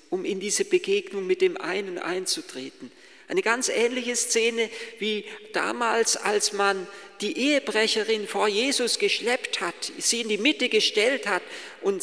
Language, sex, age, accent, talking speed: German, male, 50-69, German, 145 wpm